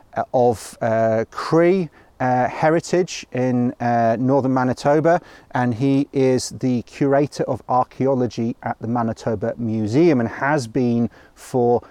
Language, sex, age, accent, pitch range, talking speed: English, male, 40-59, British, 115-135 Hz, 120 wpm